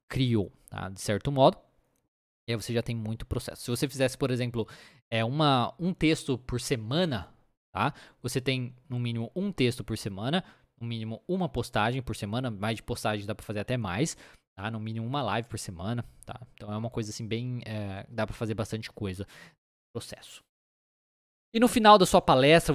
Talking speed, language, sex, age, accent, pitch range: 190 wpm, Portuguese, male, 20-39, Brazilian, 115-155 Hz